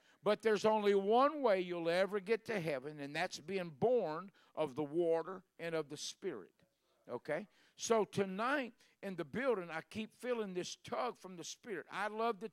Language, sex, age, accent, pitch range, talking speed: English, male, 50-69, American, 140-180 Hz, 180 wpm